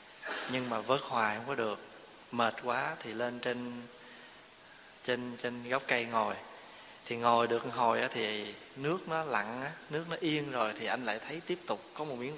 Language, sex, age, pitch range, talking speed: Vietnamese, male, 20-39, 115-135 Hz, 190 wpm